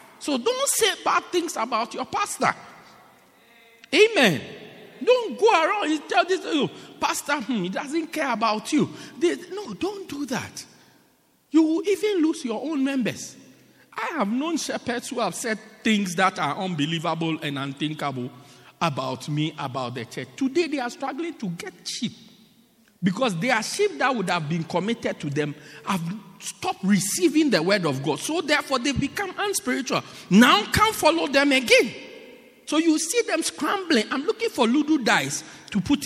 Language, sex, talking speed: English, male, 170 wpm